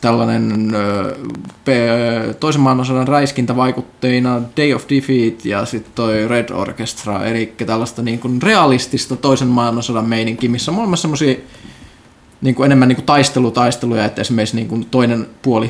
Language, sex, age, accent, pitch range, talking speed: Finnish, male, 20-39, native, 115-135 Hz, 125 wpm